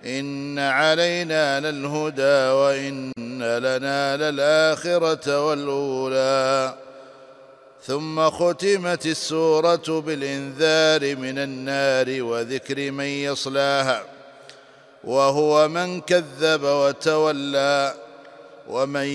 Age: 50-69